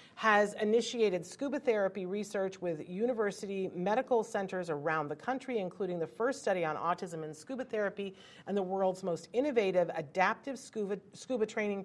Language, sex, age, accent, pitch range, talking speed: English, female, 40-59, American, 165-215 Hz, 150 wpm